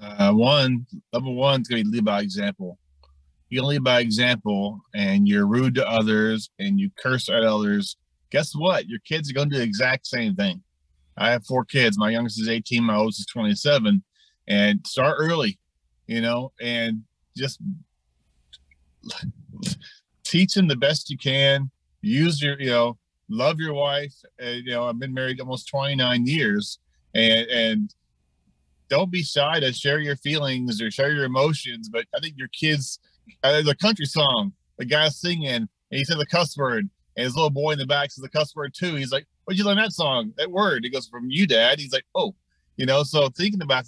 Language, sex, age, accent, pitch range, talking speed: English, male, 30-49, American, 110-155 Hz, 195 wpm